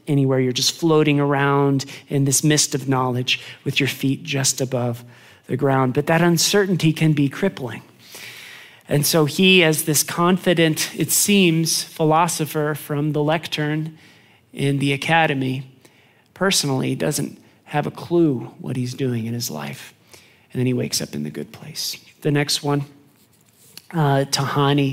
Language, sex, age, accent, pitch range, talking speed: English, male, 40-59, American, 140-175 Hz, 150 wpm